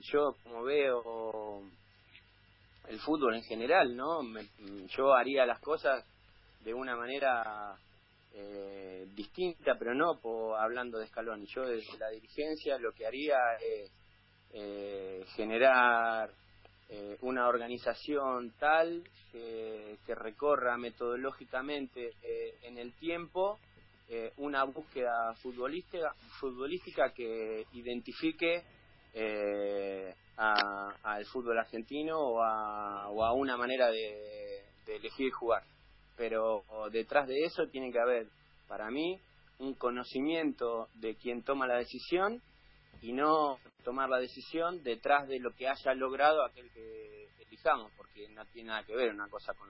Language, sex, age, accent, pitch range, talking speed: Spanish, male, 30-49, Argentinian, 105-140 Hz, 130 wpm